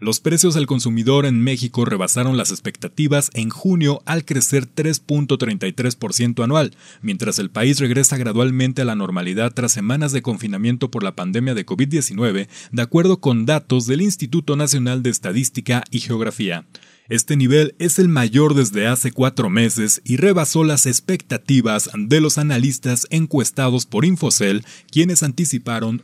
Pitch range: 115-145 Hz